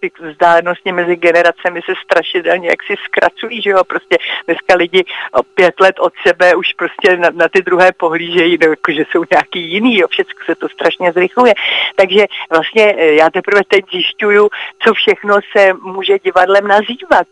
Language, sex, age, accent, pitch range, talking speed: Czech, female, 40-59, native, 170-200 Hz, 165 wpm